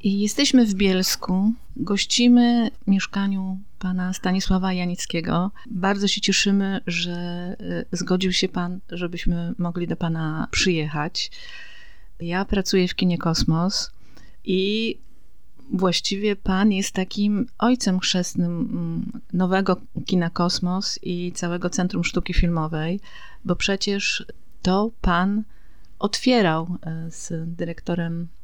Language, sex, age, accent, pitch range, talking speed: Polish, female, 40-59, native, 170-195 Hz, 100 wpm